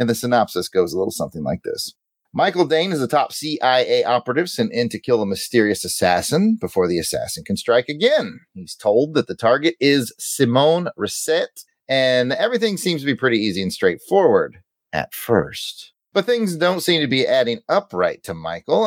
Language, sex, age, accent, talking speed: English, male, 30-49, American, 185 wpm